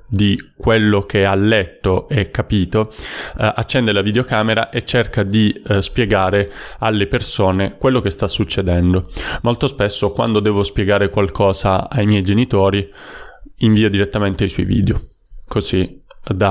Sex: male